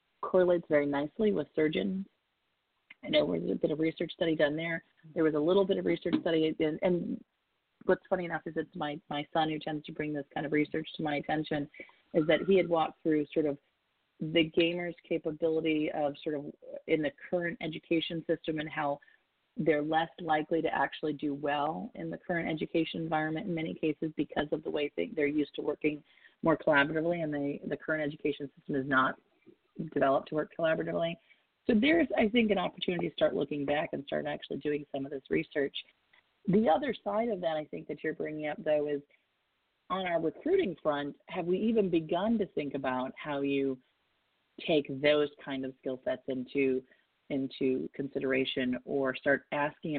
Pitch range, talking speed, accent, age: 145-170 Hz, 190 wpm, American, 30-49